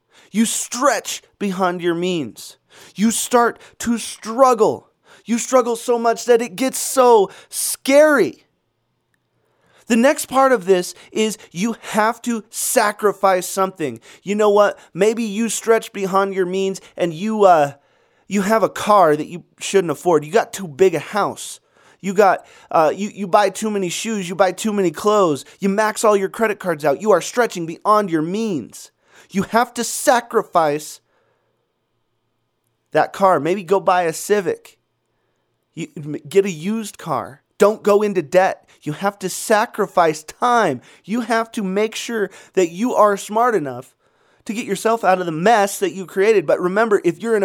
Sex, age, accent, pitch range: male, 30-49, American, 185-230 Hz